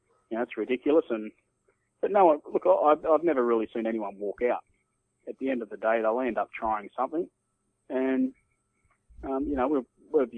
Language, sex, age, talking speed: English, male, 20-39, 190 wpm